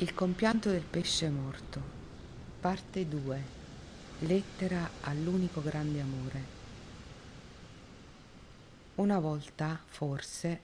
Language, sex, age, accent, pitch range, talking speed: Italian, female, 50-69, native, 145-175 Hz, 80 wpm